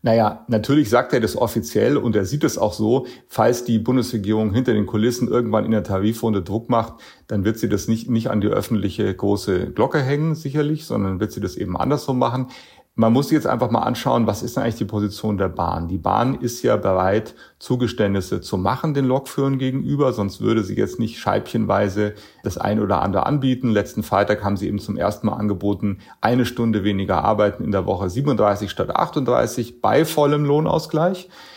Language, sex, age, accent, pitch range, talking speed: German, male, 30-49, German, 105-135 Hz, 195 wpm